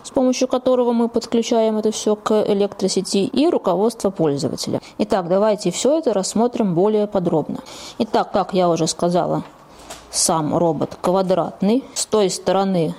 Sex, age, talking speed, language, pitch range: female, 20-39, 140 wpm, Russian, 175-235 Hz